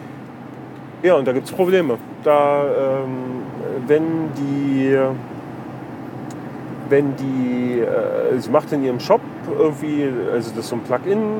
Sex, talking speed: male, 135 wpm